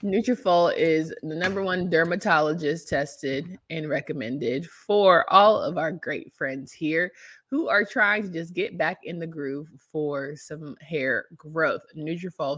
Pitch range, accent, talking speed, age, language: 155-190 Hz, American, 150 wpm, 20-39, English